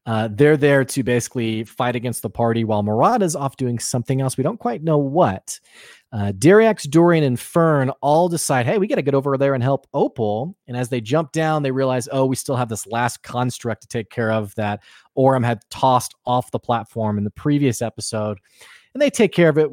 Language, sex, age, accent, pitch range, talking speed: English, male, 30-49, American, 120-155 Hz, 220 wpm